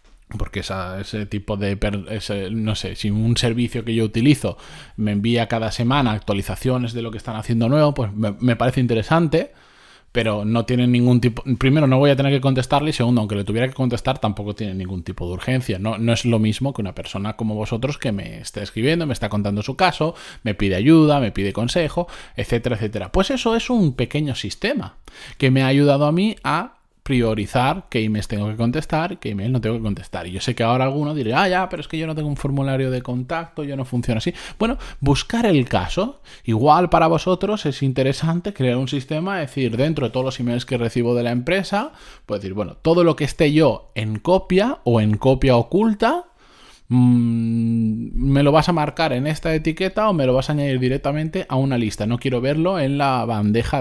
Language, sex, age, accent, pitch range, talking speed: Spanish, male, 20-39, Spanish, 110-150 Hz, 215 wpm